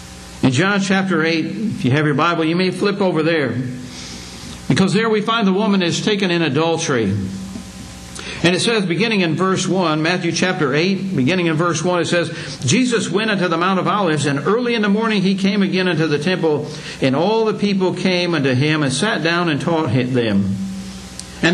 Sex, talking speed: male, 200 wpm